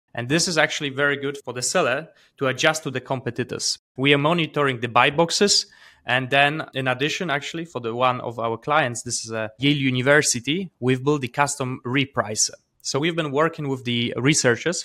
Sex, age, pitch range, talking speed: male, 20-39, 120-145 Hz, 195 wpm